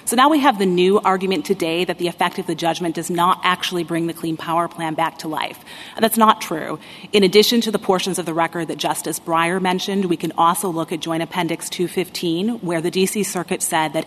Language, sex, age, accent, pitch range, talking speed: English, female, 30-49, American, 165-195 Hz, 230 wpm